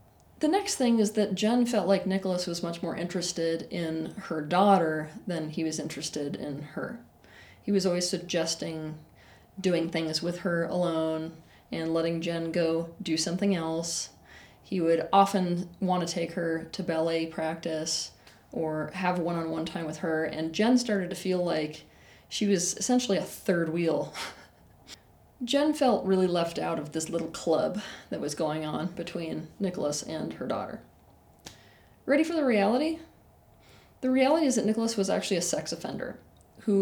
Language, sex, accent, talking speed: English, female, American, 160 wpm